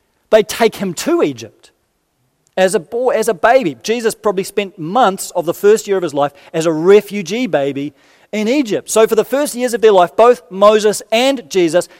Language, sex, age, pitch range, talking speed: English, male, 40-59, 170-225 Hz, 200 wpm